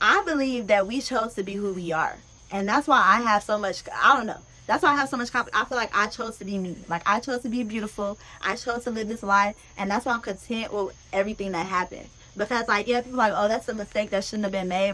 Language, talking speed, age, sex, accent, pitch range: English, 275 wpm, 10-29, female, American, 185-220 Hz